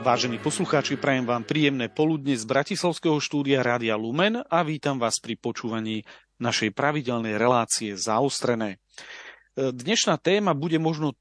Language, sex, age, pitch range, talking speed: Slovak, male, 40-59, 115-150 Hz, 130 wpm